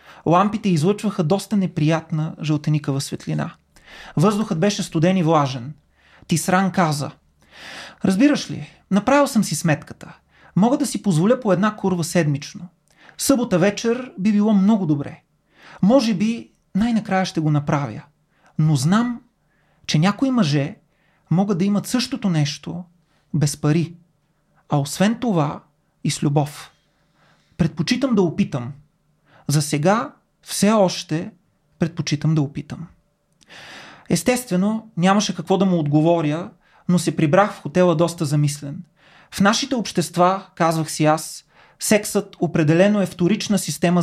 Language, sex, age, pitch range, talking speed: Bulgarian, male, 30-49, 155-200 Hz, 125 wpm